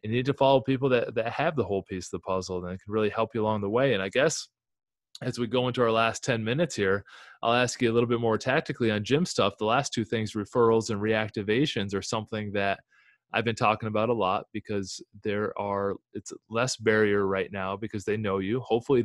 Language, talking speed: English, 235 wpm